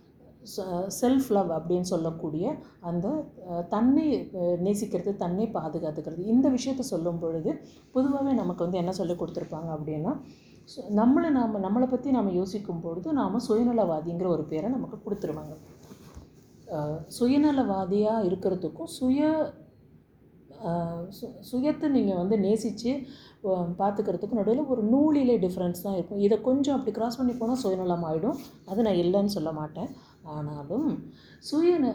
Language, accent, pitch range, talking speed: Tamil, native, 175-250 Hz, 115 wpm